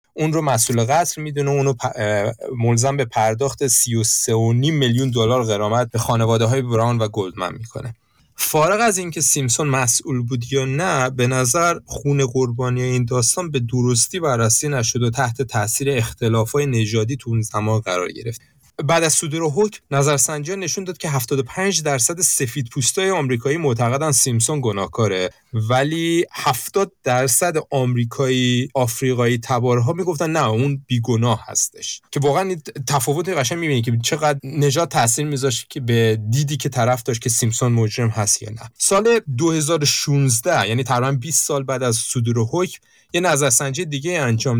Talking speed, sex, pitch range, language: 150 wpm, male, 115-145 Hz, Persian